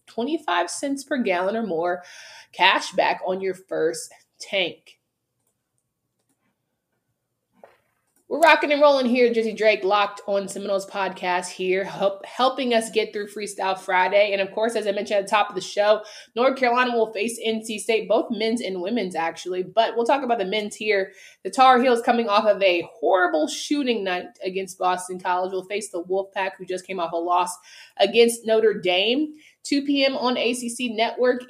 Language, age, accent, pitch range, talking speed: English, 20-39, American, 190-260 Hz, 175 wpm